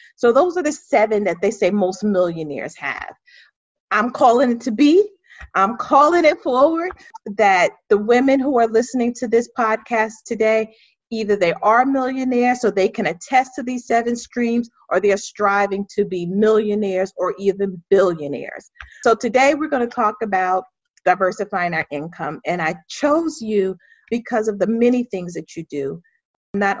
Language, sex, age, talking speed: English, female, 40-59, 170 wpm